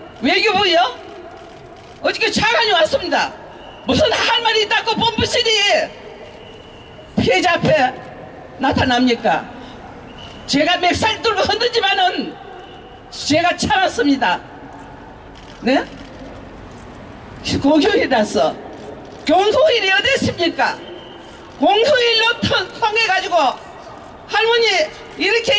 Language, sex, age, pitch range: Korean, female, 40-59, 325-410 Hz